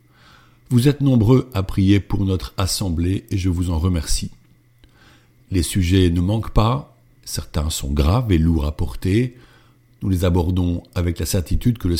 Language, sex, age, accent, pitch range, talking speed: French, male, 50-69, French, 90-120 Hz, 165 wpm